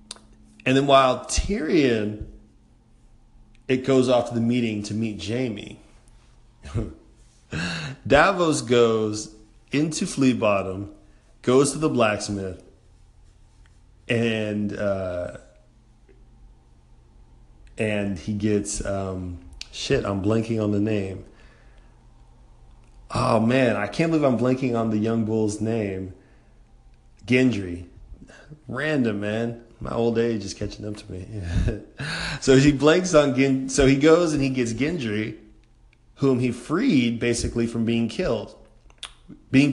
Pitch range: 100-120 Hz